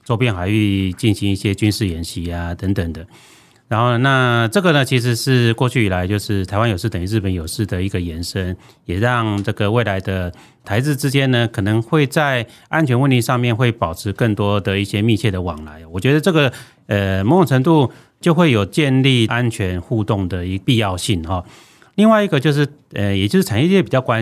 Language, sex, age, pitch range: Chinese, male, 30-49, 100-125 Hz